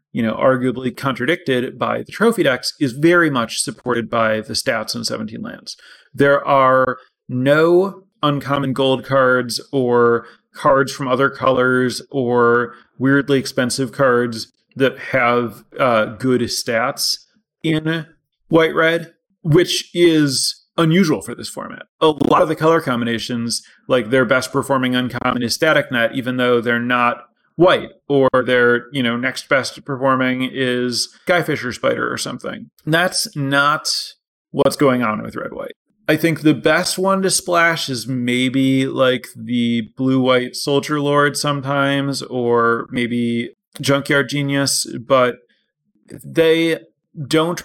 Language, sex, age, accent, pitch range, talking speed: English, male, 30-49, American, 120-145 Hz, 135 wpm